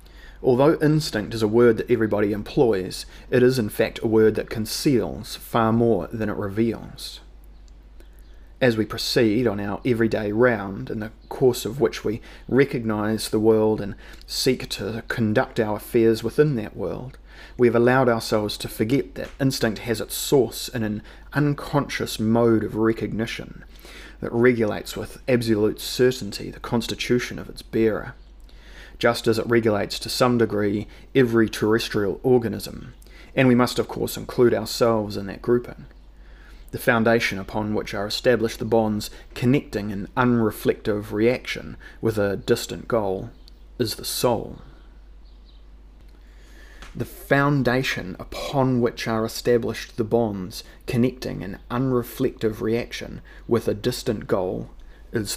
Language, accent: English, Australian